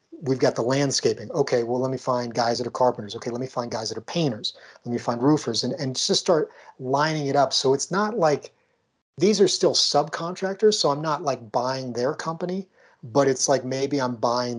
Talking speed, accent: 220 wpm, American